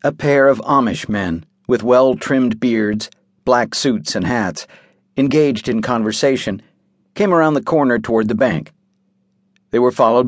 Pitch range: 110-155 Hz